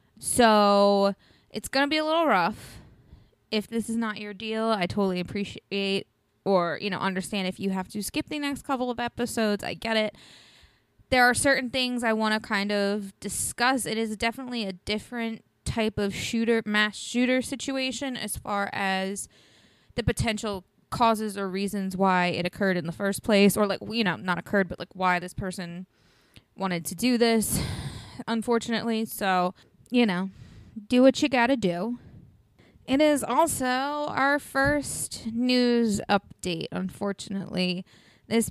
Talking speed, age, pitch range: 160 wpm, 20-39, 195-240 Hz